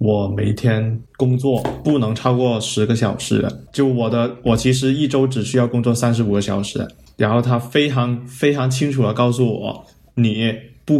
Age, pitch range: 20-39, 105-125 Hz